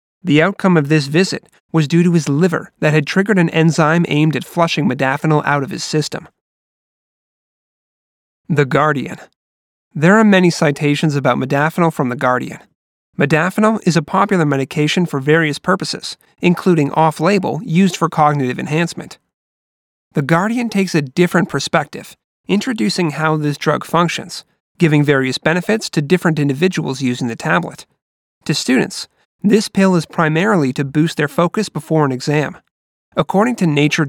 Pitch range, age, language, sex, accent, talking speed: 145-180 Hz, 30-49, English, male, American, 150 wpm